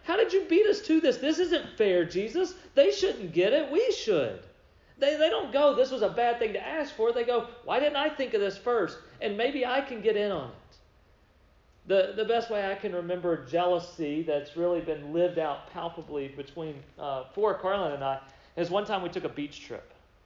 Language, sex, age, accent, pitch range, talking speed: English, male, 40-59, American, 160-220 Hz, 220 wpm